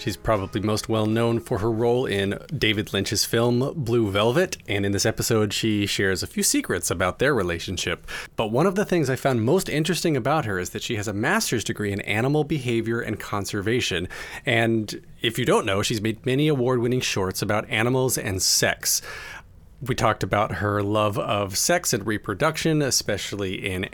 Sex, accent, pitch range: male, American, 105-150 Hz